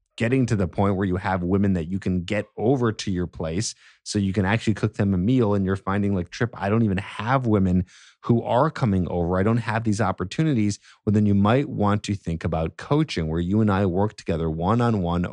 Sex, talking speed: male, 240 wpm